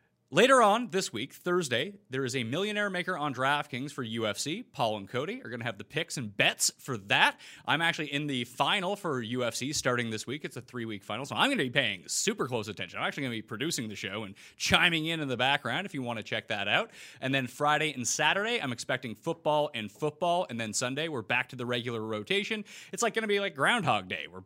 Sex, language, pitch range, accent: male, English, 125-200 Hz, American